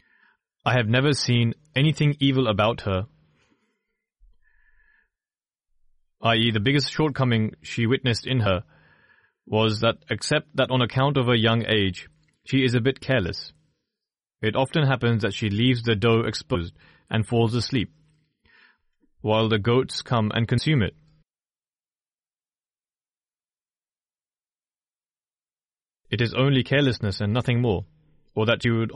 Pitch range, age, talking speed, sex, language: 110-130 Hz, 30-49, 125 wpm, male, English